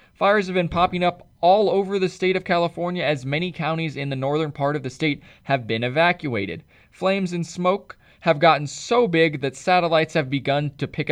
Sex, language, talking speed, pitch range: male, English, 200 wpm, 135-180 Hz